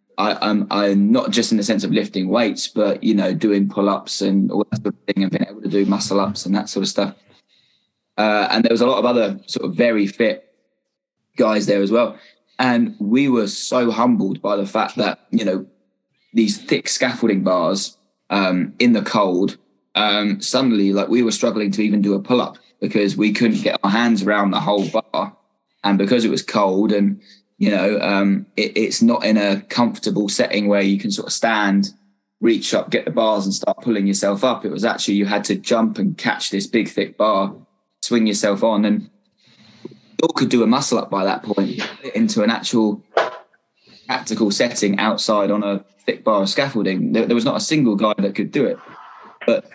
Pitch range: 100-115 Hz